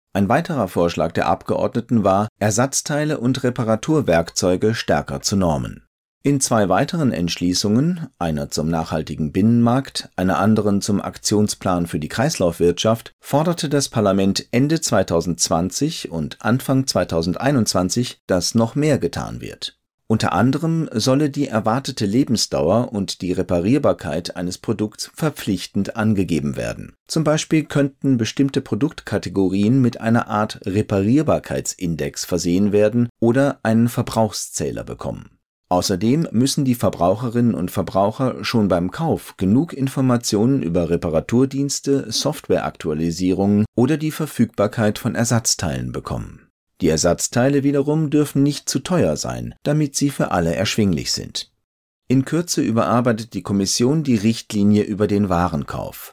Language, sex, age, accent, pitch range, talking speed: German, male, 40-59, German, 95-135 Hz, 120 wpm